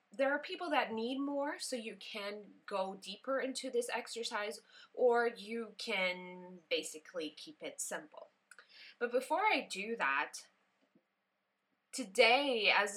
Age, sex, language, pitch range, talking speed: 20-39, female, English, 180-255 Hz, 130 wpm